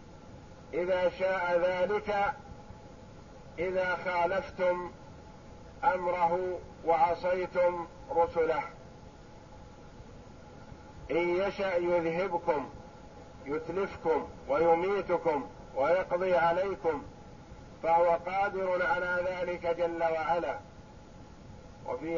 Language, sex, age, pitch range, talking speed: Arabic, male, 50-69, 170-185 Hz, 60 wpm